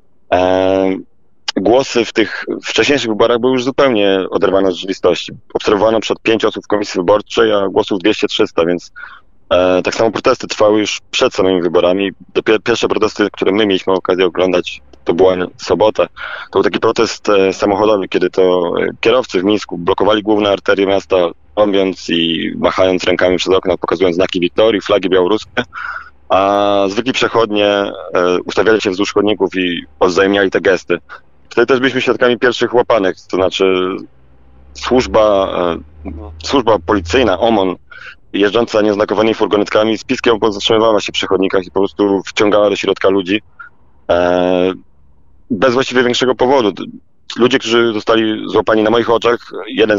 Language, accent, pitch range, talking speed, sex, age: Polish, native, 90-110 Hz, 145 wpm, male, 20-39